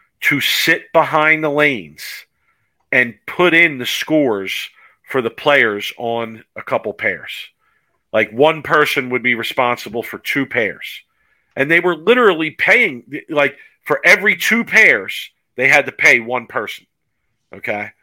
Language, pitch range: English, 115-155 Hz